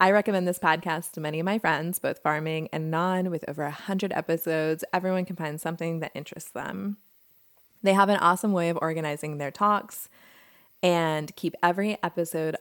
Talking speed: 175 wpm